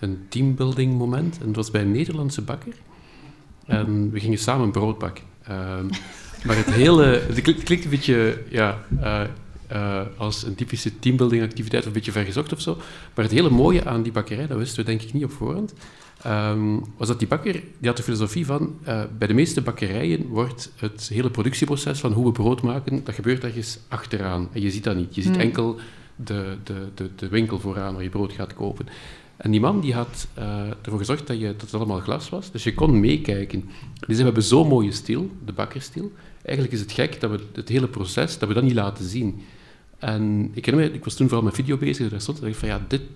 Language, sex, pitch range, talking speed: Dutch, male, 105-130 Hz, 225 wpm